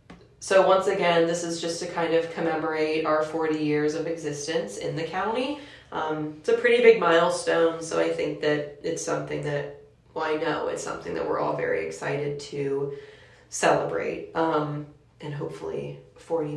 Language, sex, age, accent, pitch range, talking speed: English, female, 20-39, American, 155-195 Hz, 170 wpm